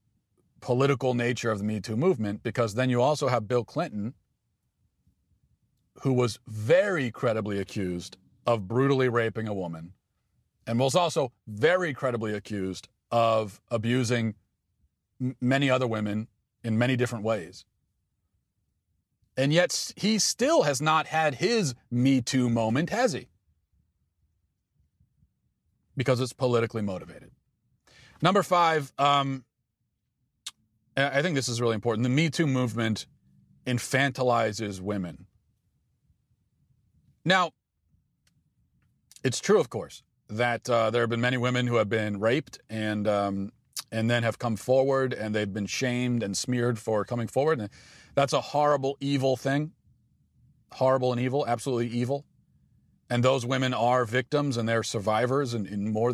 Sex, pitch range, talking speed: male, 110-135 Hz, 130 wpm